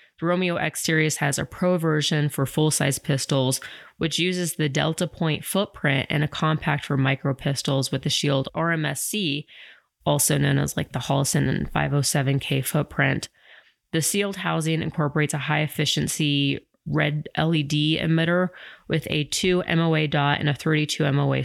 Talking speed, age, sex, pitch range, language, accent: 150 wpm, 30-49, female, 140-160 Hz, English, American